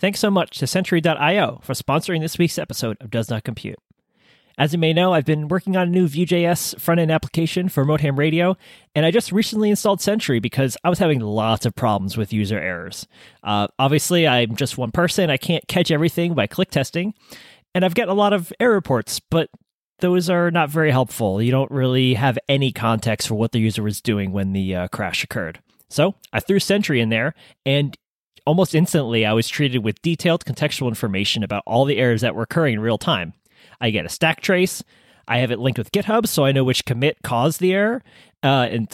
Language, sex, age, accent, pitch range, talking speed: English, male, 30-49, American, 115-170 Hz, 210 wpm